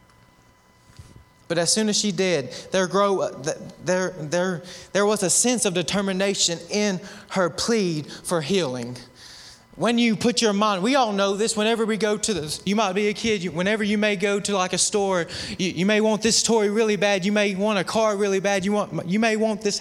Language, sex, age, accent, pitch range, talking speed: English, male, 20-39, American, 175-215 Hz, 210 wpm